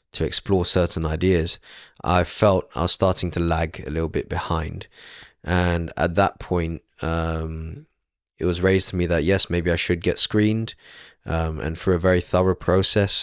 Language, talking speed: English, 175 wpm